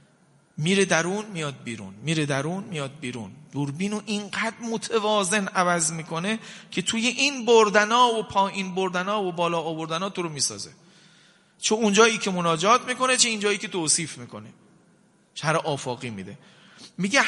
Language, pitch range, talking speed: Persian, 160-210 Hz, 135 wpm